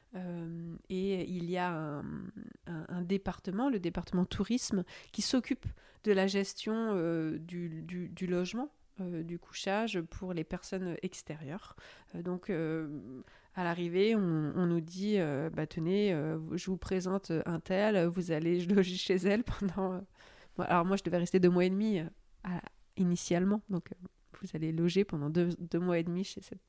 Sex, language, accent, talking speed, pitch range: female, French, French, 175 wpm, 175-205 Hz